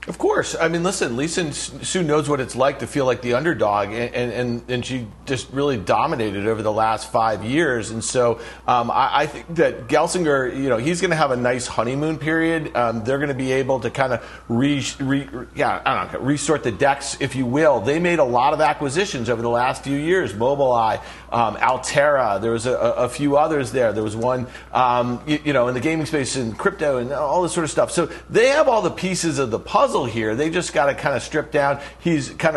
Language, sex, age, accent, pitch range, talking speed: English, male, 40-59, American, 125-155 Hz, 235 wpm